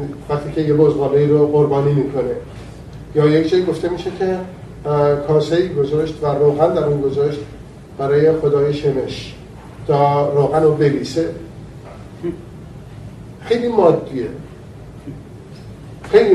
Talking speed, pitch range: 110 wpm, 140-160 Hz